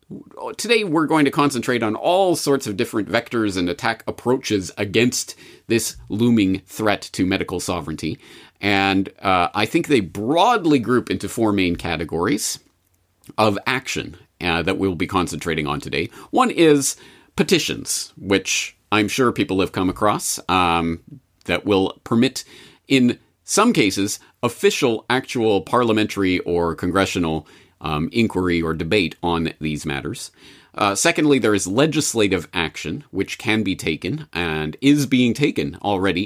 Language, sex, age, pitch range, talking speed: English, male, 40-59, 90-120 Hz, 140 wpm